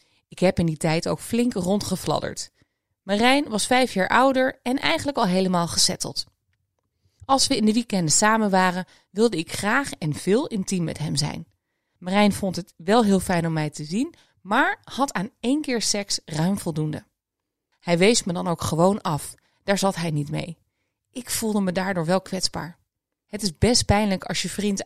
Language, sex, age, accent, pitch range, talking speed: Dutch, female, 20-39, Dutch, 165-220 Hz, 185 wpm